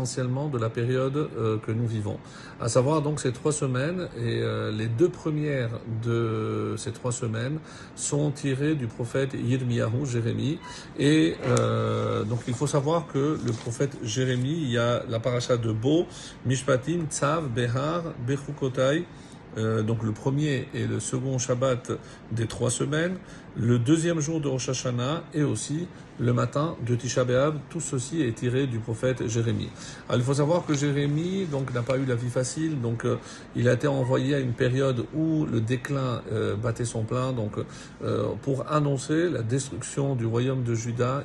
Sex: male